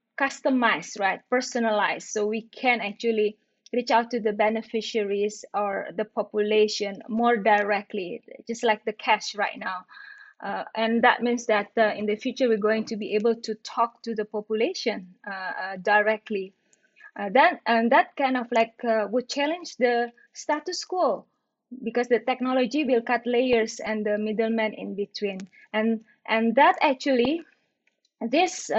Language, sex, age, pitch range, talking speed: English, female, 20-39, 215-270 Hz, 155 wpm